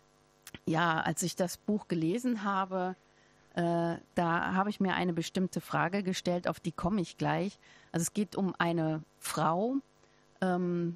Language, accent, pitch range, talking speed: German, German, 155-185 Hz, 155 wpm